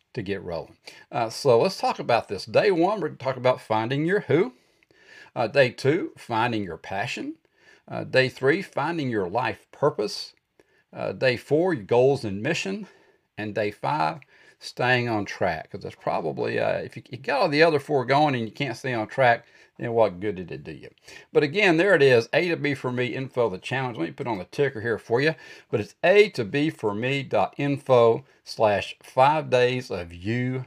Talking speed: 205 wpm